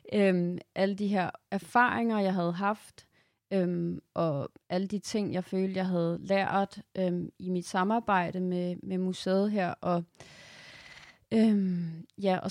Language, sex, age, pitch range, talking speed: Danish, female, 30-49, 175-200 Hz, 120 wpm